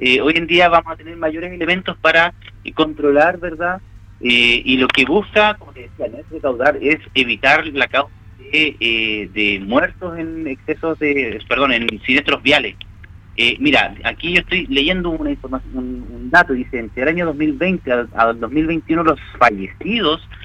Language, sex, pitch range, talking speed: Spanish, male, 105-165 Hz, 165 wpm